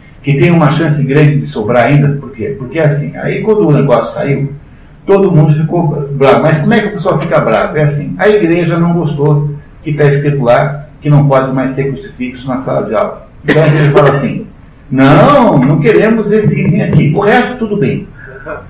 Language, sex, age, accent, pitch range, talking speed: Portuguese, male, 60-79, Brazilian, 140-175 Hz, 205 wpm